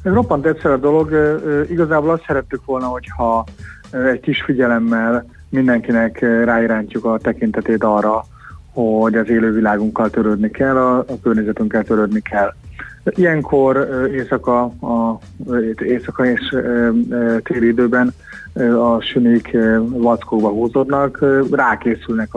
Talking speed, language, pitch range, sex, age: 100 wpm, Hungarian, 110-130 Hz, male, 30-49